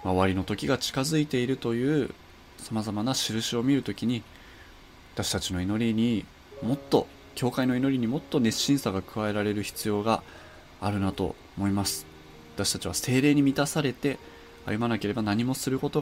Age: 20-39